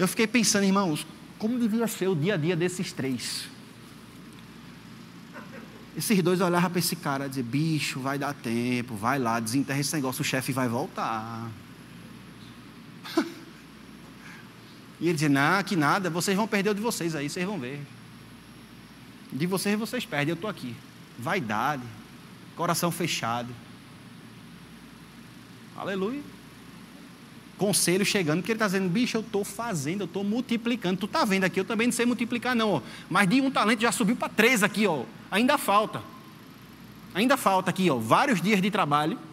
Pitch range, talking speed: 155-225 Hz, 160 wpm